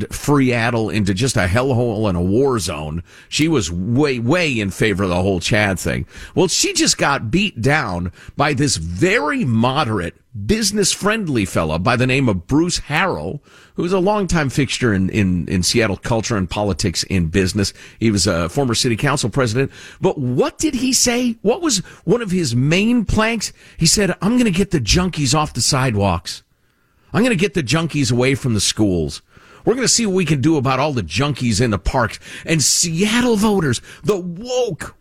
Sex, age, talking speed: male, 50-69, 190 wpm